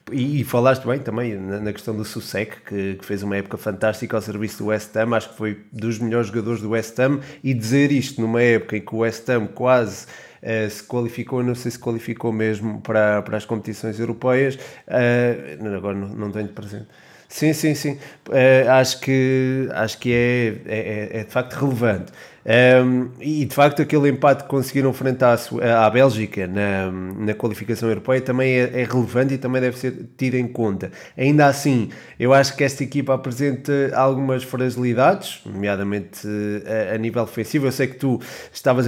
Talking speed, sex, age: 180 wpm, male, 20-39